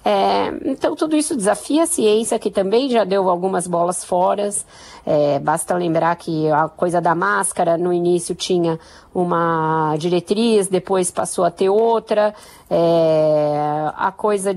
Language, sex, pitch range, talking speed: Portuguese, female, 180-245 Hz, 130 wpm